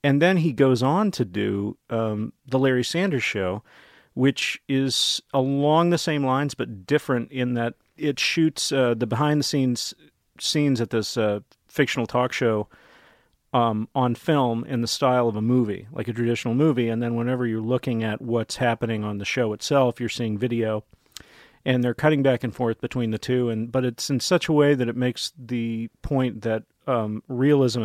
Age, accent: 40-59, American